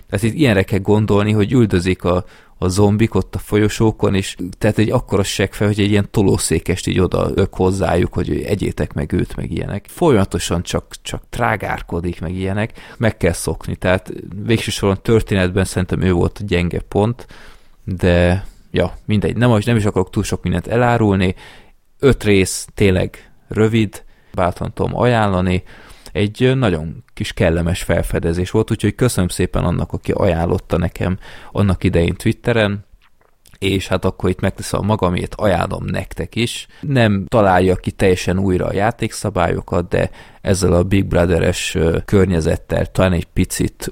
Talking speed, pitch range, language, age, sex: 150 wpm, 90-105 Hz, Hungarian, 20-39, male